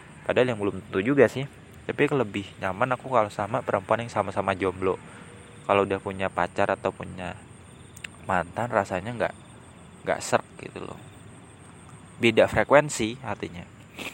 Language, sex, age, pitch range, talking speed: Indonesian, male, 20-39, 95-115 Hz, 130 wpm